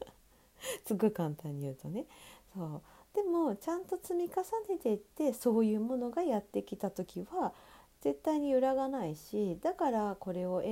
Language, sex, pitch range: Japanese, female, 170-260 Hz